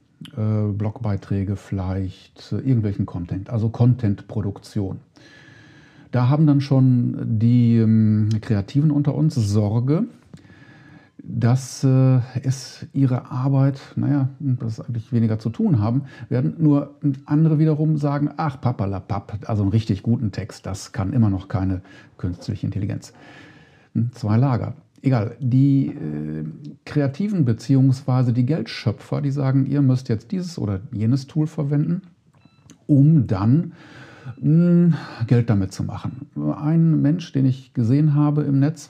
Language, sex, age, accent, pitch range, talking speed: German, male, 50-69, German, 110-145 Hz, 120 wpm